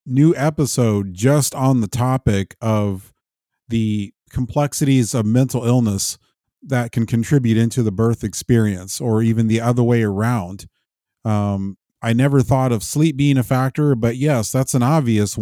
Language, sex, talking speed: English, male, 150 wpm